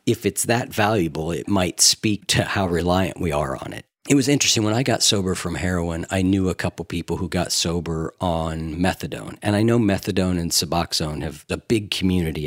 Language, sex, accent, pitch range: English, male, American, 85-120 Hz